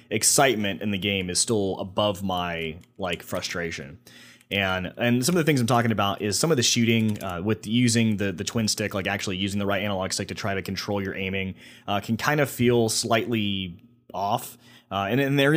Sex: male